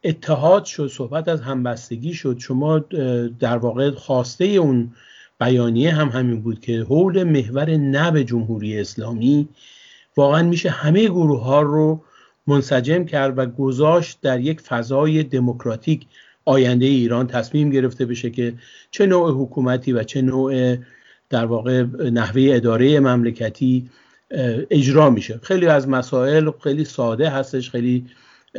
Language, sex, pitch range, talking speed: Persian, male, 120-155 Hz, 130 wpm